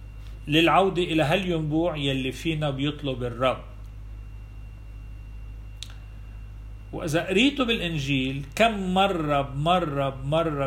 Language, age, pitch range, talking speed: Arabic, 50-69, 105-150 Hz, 85 wpm